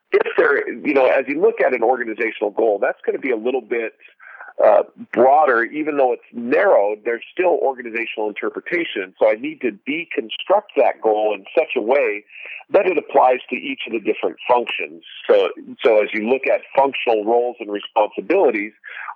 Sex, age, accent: male, 50-69, American